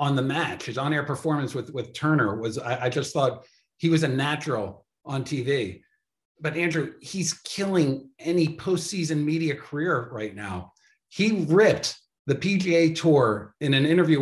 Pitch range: 140-180 Hz